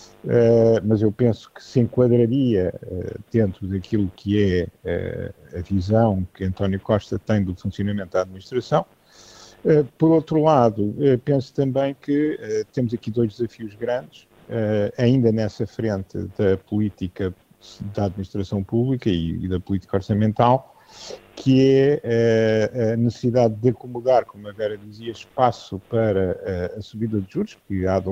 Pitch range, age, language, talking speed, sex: 105-125 Hz, 50-69, Portuguese, 135 wpm, male